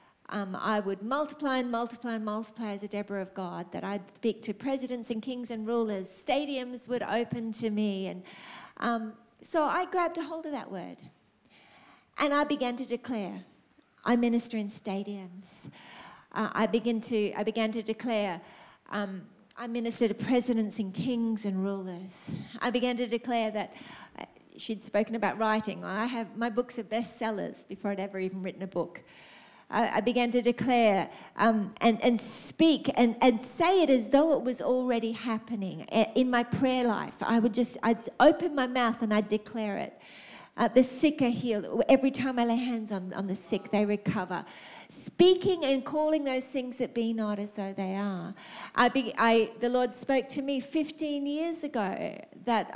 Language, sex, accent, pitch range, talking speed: English, female, Australian, 210-255 Hz, 180 wpm